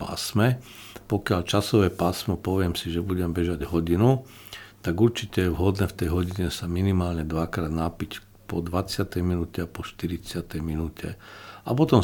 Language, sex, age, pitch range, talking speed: Slovak, male, 50-69, 85-100 Hz, 150 wpm